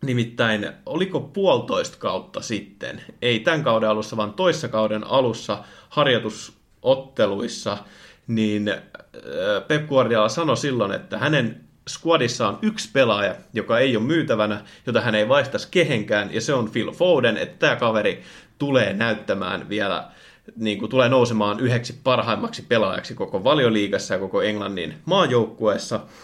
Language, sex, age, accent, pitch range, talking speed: Finnish, male, 30-49, native, 105-140 Hz, 130 wpm